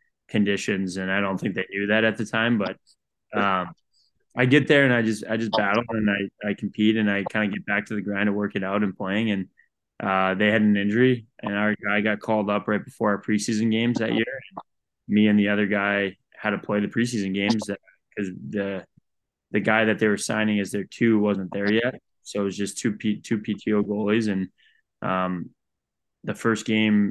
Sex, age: male, 20-39